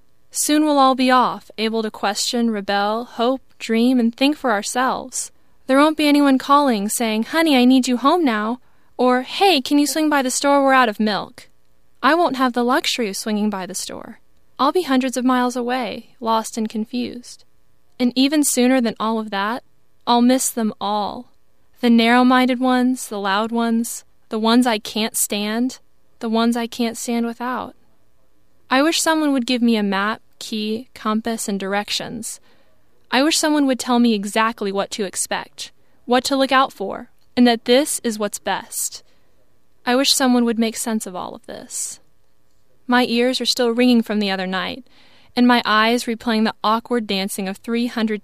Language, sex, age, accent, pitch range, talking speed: English, female, 20-39, American, 220-255 Hz, 185 wpm